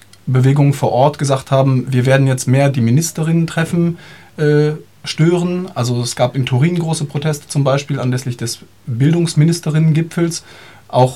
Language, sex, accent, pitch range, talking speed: German, male, German, 120-145 Hz, 145 wpm